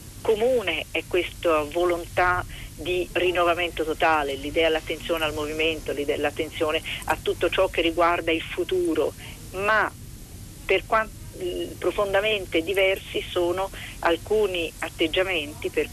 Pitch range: 160-210 Hz